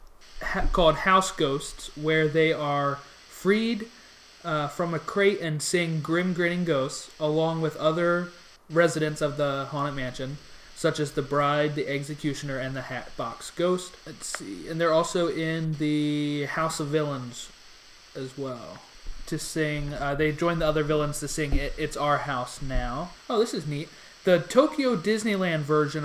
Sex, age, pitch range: male, 20-39, 145-185 Hz